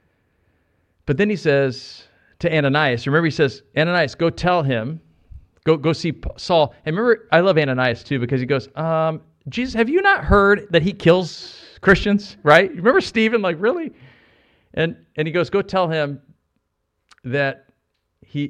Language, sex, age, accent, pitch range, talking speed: English, male, 50-69, American, 115-160 Hz, 160 wpm